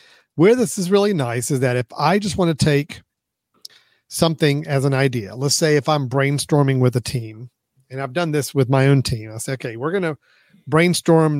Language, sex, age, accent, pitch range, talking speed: English, male, 40-59, American, 120-150 Hz, 210 wpm